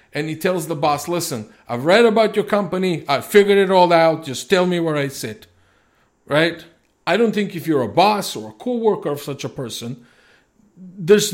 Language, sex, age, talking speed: English, male, 50-69, 200 wpm